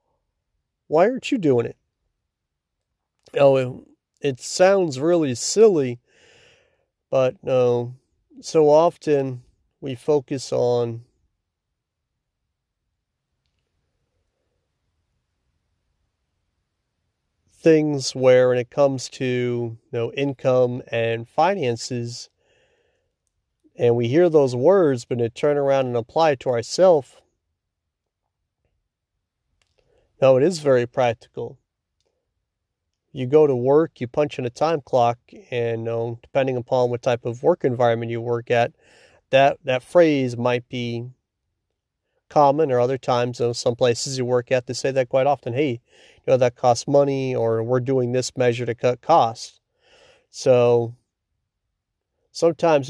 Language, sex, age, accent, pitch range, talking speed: English, male, 40-59, American, 115-140 Hz, 125 wpm